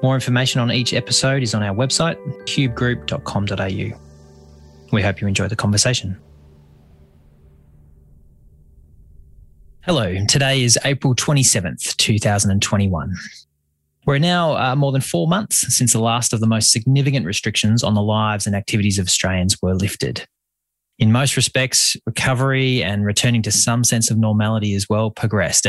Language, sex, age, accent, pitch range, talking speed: English, male, 20-39, Australian, 95-125 Hz, 140 wpm